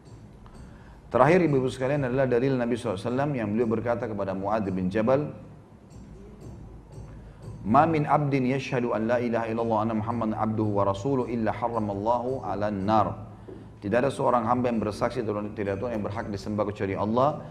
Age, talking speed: 30-49, 145 wpm